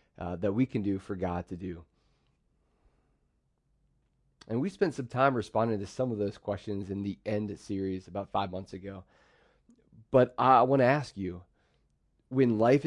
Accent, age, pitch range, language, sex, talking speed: American, 30-49, 95-120 Hz, English, male, 170 wpm